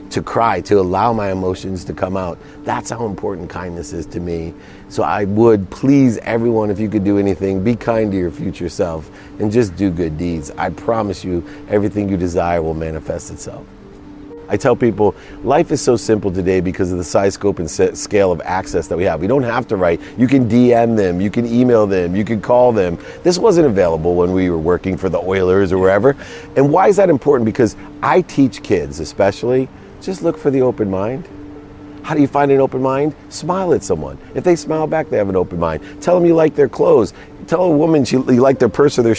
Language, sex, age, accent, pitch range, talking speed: English, male, 40-59, American, 95-135 Hz, 225 wpm